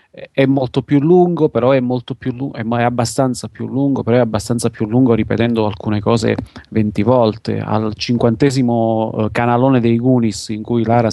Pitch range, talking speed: 110-125 Hz, 125 wpm